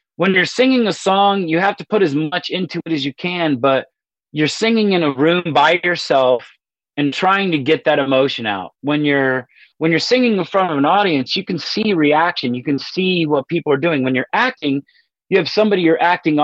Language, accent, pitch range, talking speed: English, American, 135-185 Hz, 220 wpm